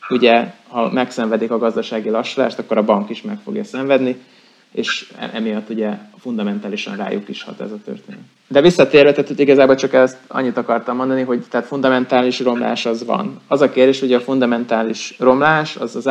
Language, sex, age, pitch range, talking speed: Hungarian, male, 20-39, 115-150 Hz, 175 wpm